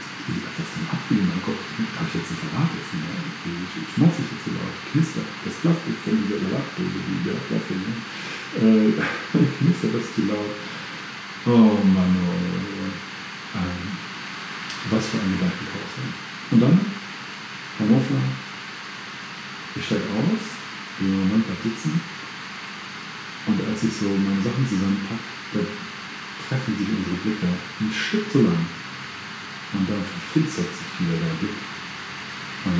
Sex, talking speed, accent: male, 150 wpm, German